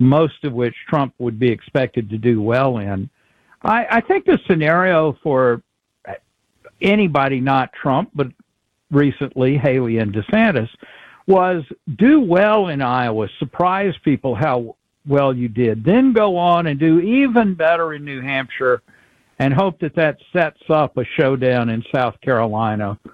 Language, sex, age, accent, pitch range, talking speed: English, male, 60-79, American, 125-170 Hz, 150 wpm